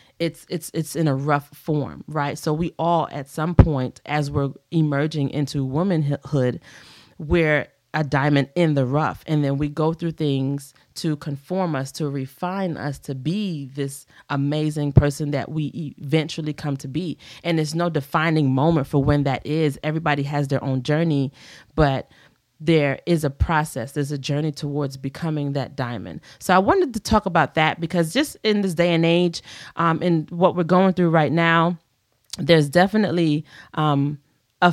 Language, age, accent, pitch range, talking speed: English, 30-49, American, 140-165 Hz, 175 wpm